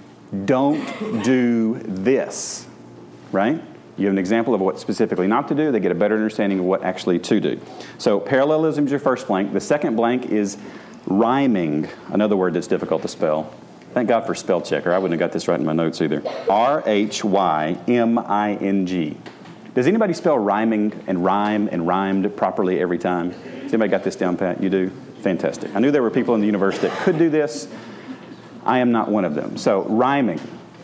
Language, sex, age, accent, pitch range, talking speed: English, male, 40-59, American, 100-145 Hz, 200 wpm